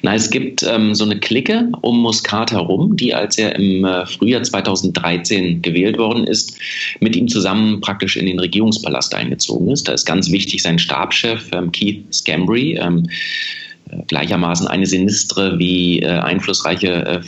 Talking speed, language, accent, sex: 160 wpm, German, German, male